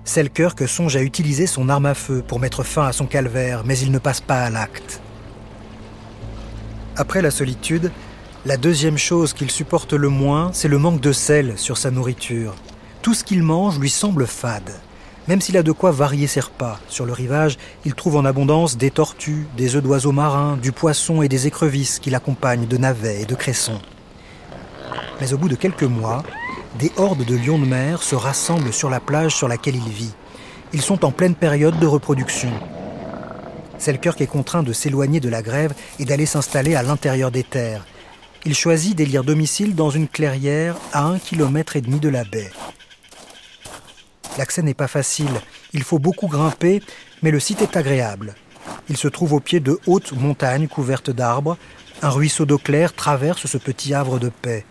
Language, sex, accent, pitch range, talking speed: French, male, French, 125-155 Hz, 190 wpm